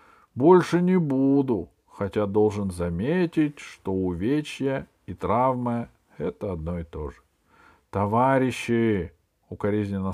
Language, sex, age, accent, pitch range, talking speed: Russian, male, 50-69, native, 95-150 Hz, 100 wpm